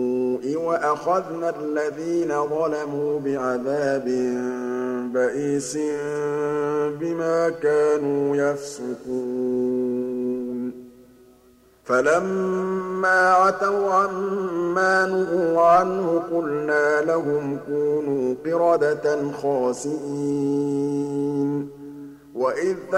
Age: 50-69